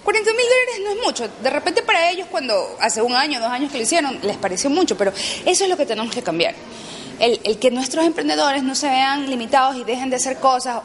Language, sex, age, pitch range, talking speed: Spanish, female, 30-49, 200-275 Hz, 245 wpm